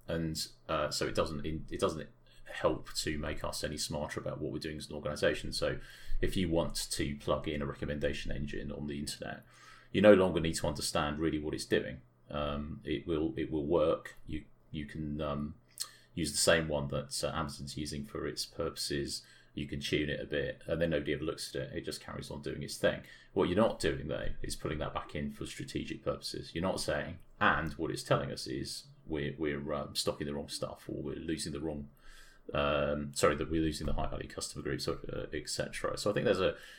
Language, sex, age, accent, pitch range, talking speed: English, male, 30-49, British, 70-80 Hz, 220 wpm